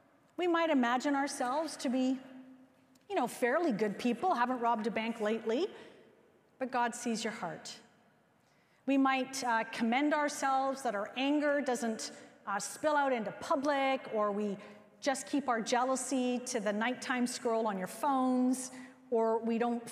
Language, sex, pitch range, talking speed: English, female, 230-305 Hz, 155 wpm